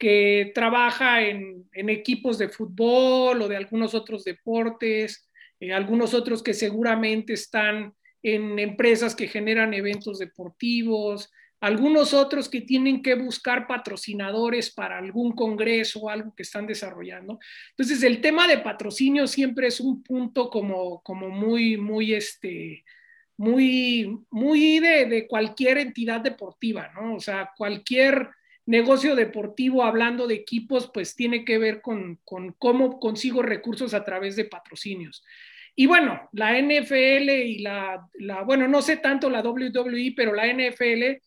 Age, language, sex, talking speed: 40-59, Spanish, male, 140 wpm